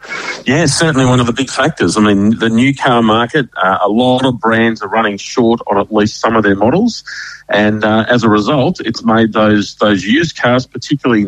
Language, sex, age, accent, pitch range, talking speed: English, male, 40-59, Australian, 105-130 Hz, 215 wpm